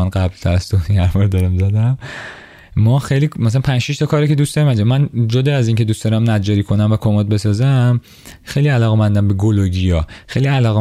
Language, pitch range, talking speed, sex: Persian, 100-130 Hz, 190 wpm, male